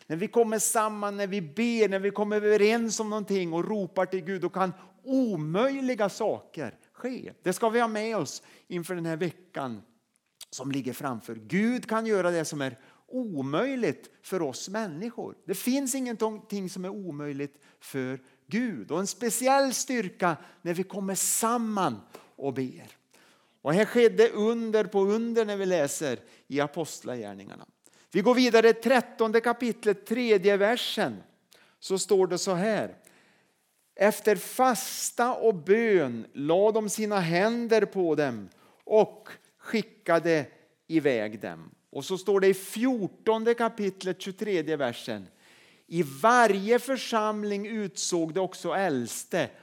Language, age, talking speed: Swedish, 40-59, 140 wpm